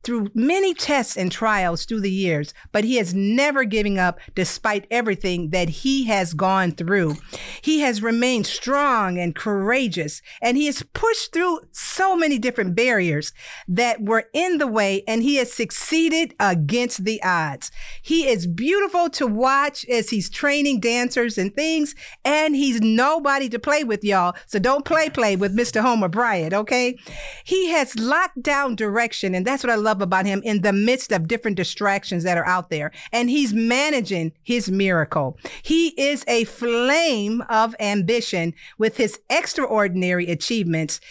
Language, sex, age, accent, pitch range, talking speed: English, female, 50-69, American, 195-275 Hz, 165 wpm